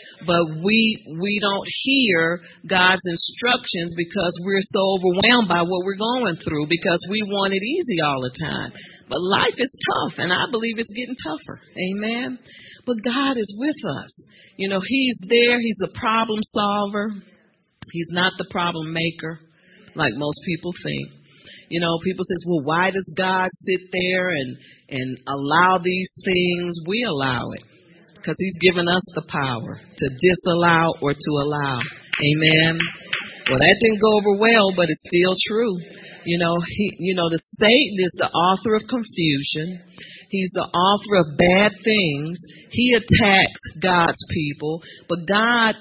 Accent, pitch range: American, 170-205 Hz